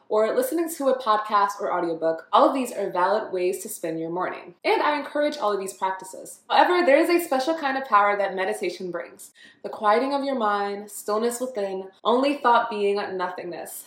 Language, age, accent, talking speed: English, 20-39, American, 200 wpm